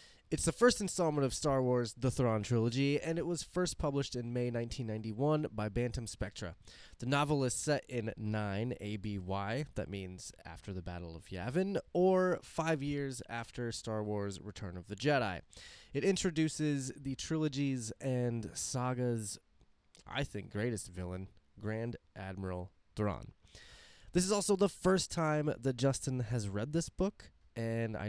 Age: 20-39